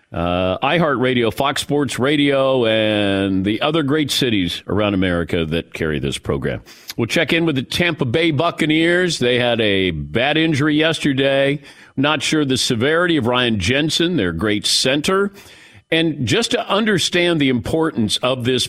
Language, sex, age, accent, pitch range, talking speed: English, male, 50-69, American, 110-155 Hz, 155 wpm